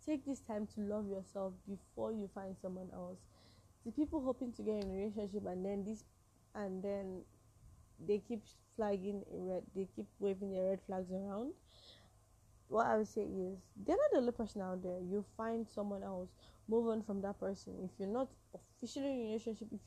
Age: 10-29